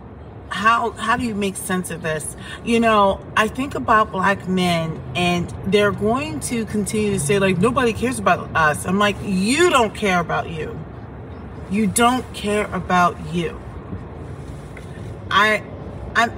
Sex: female